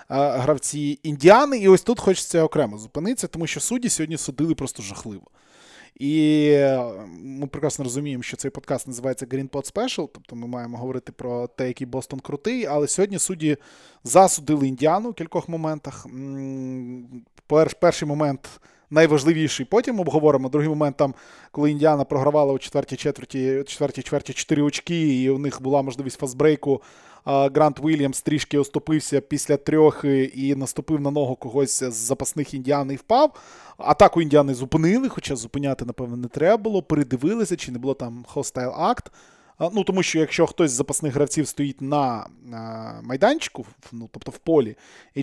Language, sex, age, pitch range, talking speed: Ukrainian, male, 20-39, 135-170 Hz, 155 wpm